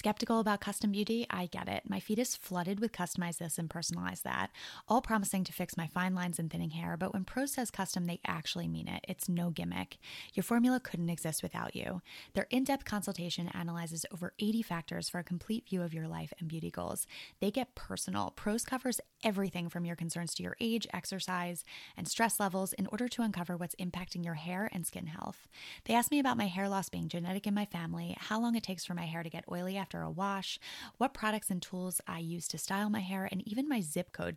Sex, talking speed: female, 225 wpm